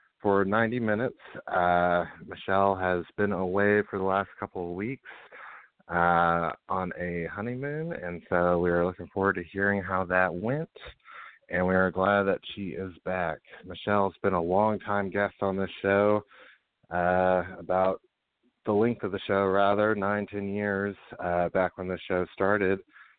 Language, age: English, 30-49